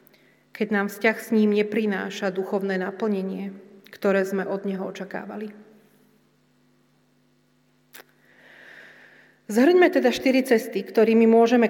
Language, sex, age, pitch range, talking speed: Slovak, female, 40-59, 195-225 Hz, 95 wpm